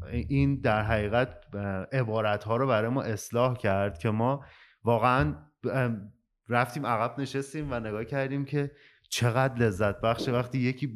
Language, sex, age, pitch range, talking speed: Persian, male, 30-49, 105-135 Hz, 135 wpm